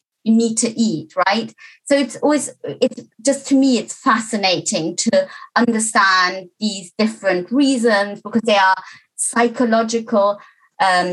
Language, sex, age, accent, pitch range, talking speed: Spanish, female, 20-39, British, 195-250 Hz, 125 wpm